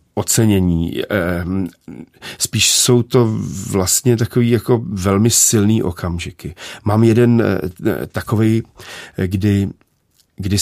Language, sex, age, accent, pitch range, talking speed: Czech, male, 40-59, native, 85-105 Hz, 85 wpm